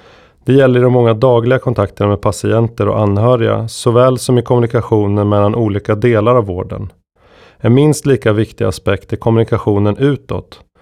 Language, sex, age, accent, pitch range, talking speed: Swedish, male, 30-49, native, 105-125 Hz, 150 wpm